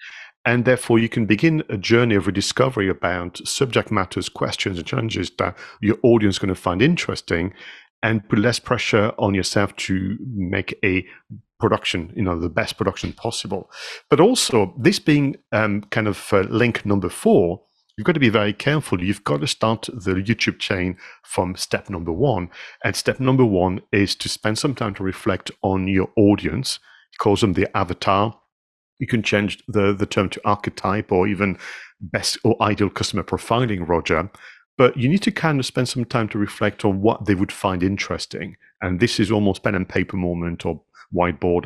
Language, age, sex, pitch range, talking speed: English, 50-69, male, 95-120 Hz, 185 wpm